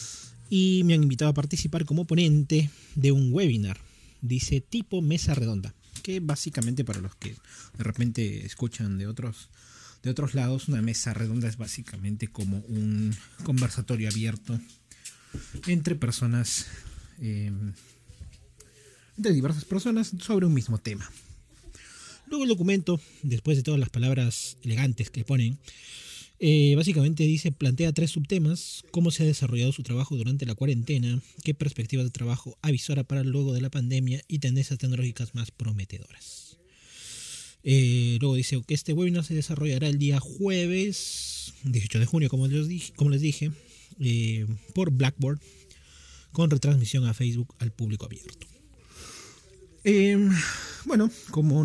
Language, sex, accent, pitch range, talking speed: Spanish, male, Argentinian, 115-150 Hz, 140 wpm